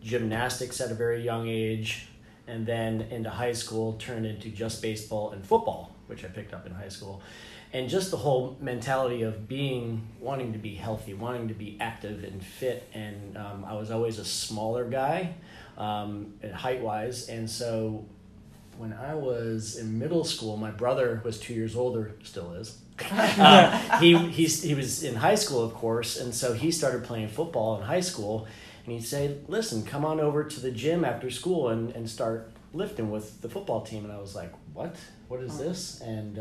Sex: male